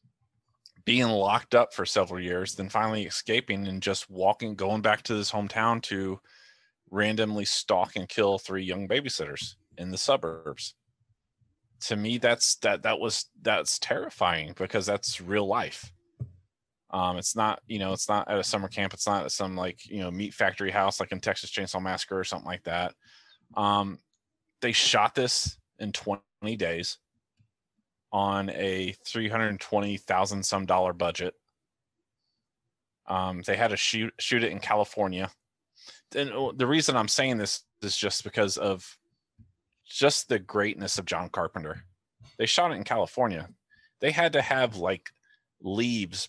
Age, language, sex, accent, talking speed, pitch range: 20-39, English, male, American, 150 wpm, 95-115 Hz